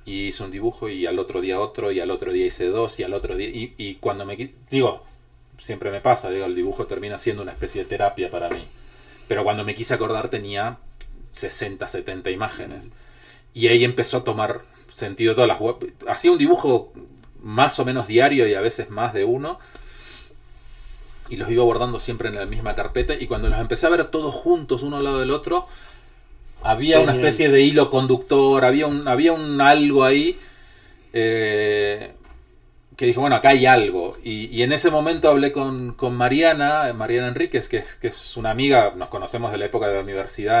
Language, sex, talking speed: Spanish, male, 200 wpm